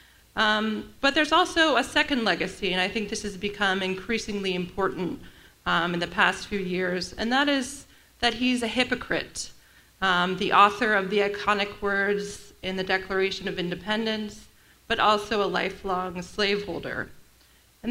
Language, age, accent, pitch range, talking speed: English, 30-49, American, 190-245 Hz, 155 wpm